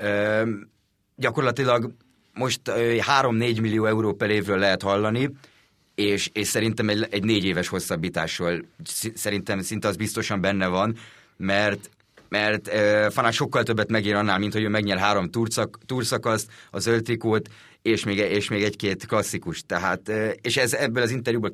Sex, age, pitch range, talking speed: male, 30-49, 100-115 Hz, 140 wpm